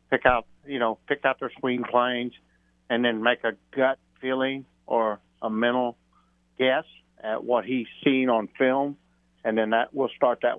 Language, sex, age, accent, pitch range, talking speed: English, male, 60-79, American, 100-125 Hz, 175 wpm